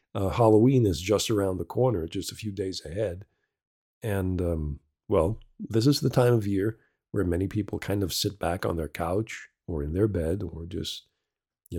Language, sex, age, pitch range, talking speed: English, male, 40-59, 95-120 Hz, 195 wpm